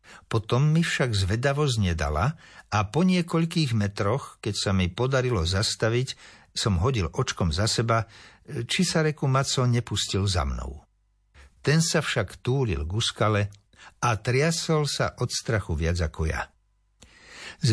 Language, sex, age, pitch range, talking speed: Slovak, male, 60-79, 95-125 Hz, 135 wpm